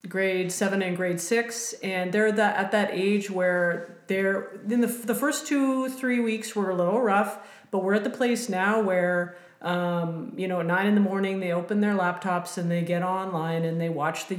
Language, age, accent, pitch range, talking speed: English, 40-59, American, 160-195 Hz, 215 wpm